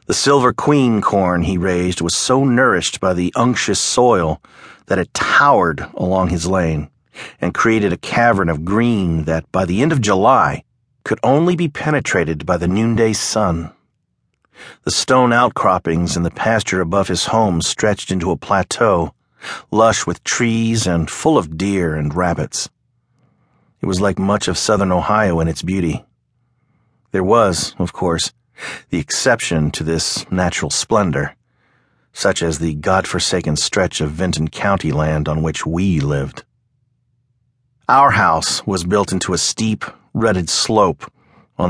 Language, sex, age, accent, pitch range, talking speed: English, male, 50-69, American, 85-110 Hz, 150 wpm